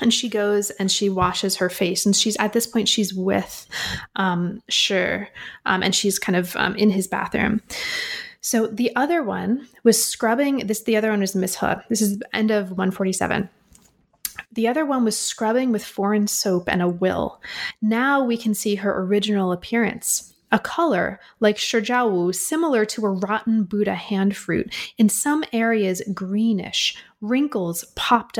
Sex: female